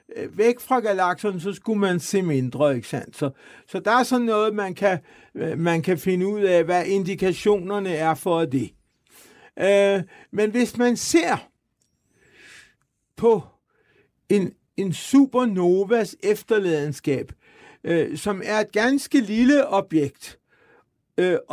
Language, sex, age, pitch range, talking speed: Danish, male, 60-79, 175-235 Hz, 130 wpm